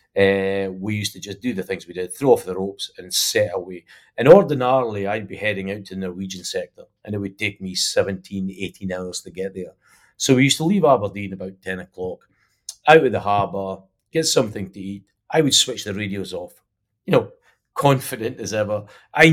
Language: English